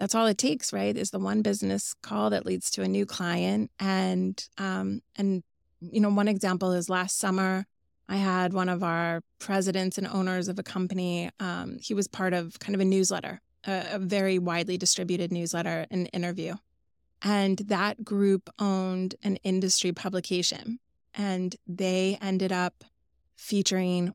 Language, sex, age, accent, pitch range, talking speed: English, female, 20-39, American, 180-200 Hz, 165 wpm